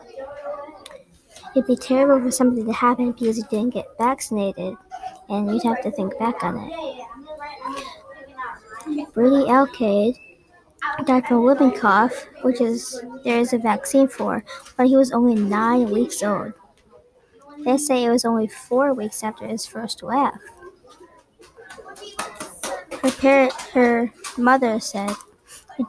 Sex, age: male, 20-39